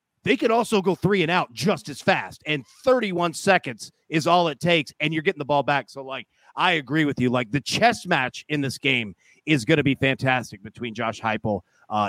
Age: 30-49